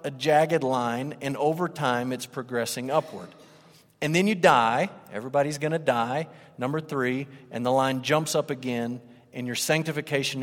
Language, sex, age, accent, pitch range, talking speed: English, male, 40-59, American, 120-155 Hz, 155 wpm